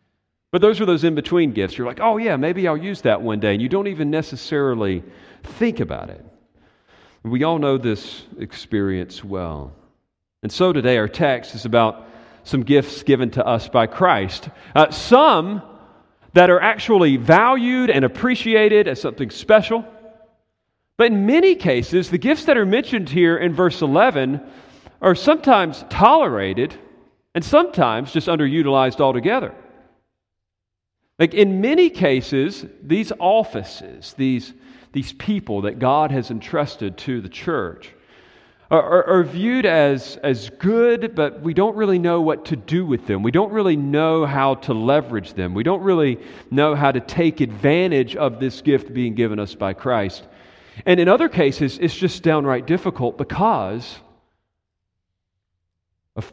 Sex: male